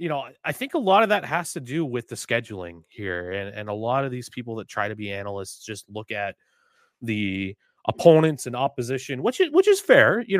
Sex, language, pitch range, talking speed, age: male, English, 105-145 Hz, 230 wpm, 30-49